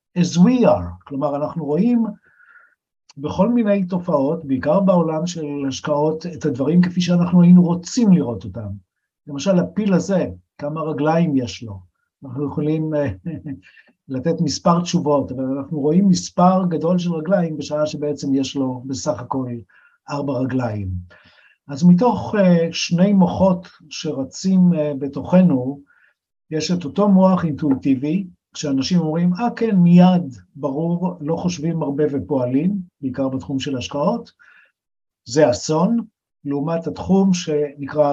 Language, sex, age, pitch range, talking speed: Hebrew, male, 50-69, 135-180 Hz, 125 wpm